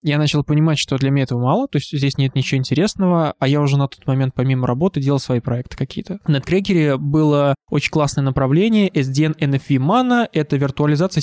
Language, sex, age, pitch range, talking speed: Russian, male, 20-39, 135-175 Hz, 200 wpm